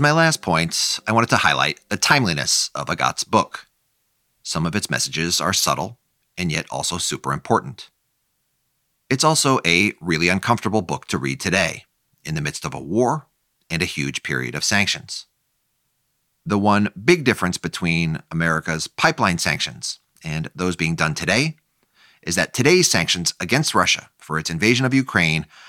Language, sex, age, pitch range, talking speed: English, male, 40-59, 85-120 Hz, 160 wpm